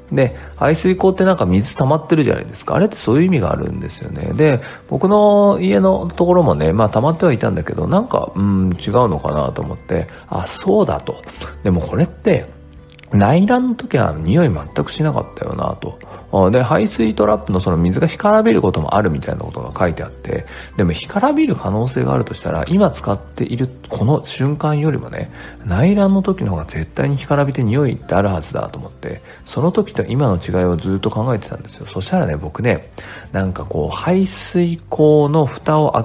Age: 40-59